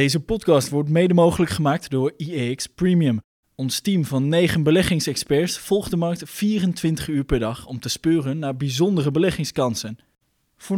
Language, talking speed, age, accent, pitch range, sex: Dutch, 155 wpm, 20-39, Dutch, 130-170 Hz, male